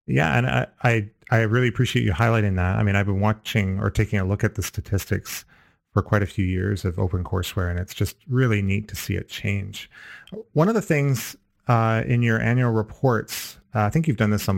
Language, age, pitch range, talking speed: English, 30-49, 100-115 Hz, 225 wpm